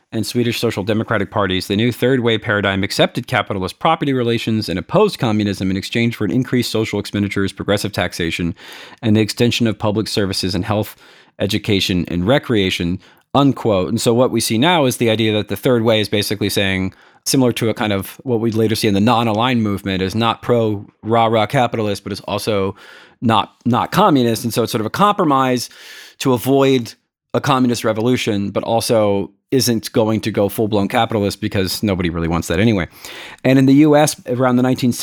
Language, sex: English, male